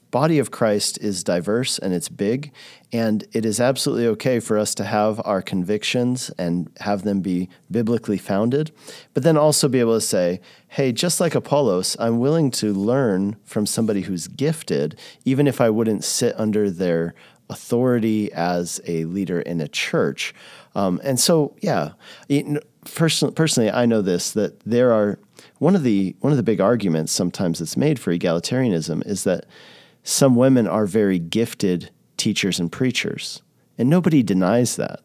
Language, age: English, 40-59